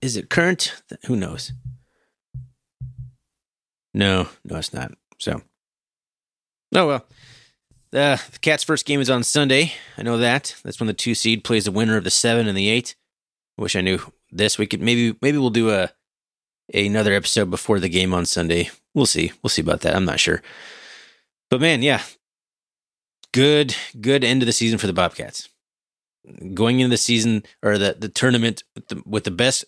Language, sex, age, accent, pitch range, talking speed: English, male, 30-49, American, 100-125 Hz, 180 wpm